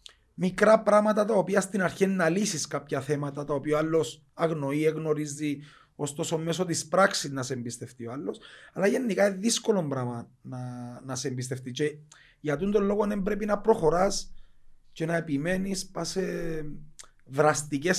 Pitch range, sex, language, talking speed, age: 130-175 Hz, male, Greek, 155 wpm, 30-49